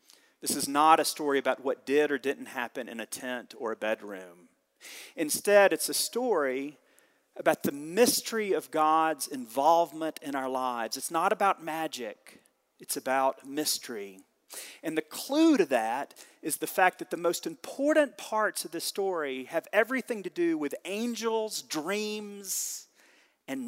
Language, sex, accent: English, male, American